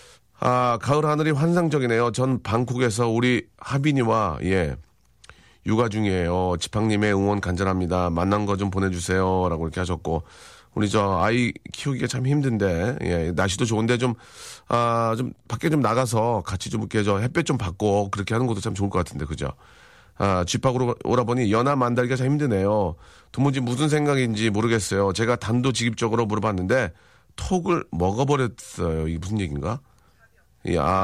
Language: Korean